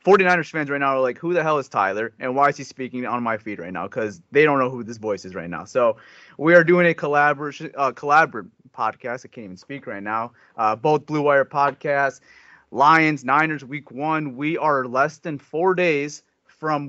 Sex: male